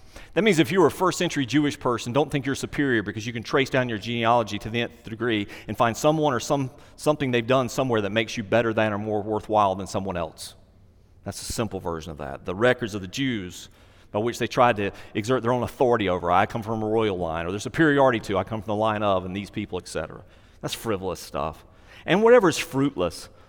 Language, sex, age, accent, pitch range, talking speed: English, male, 40-59, American, 100-125 Hz, 235 wpm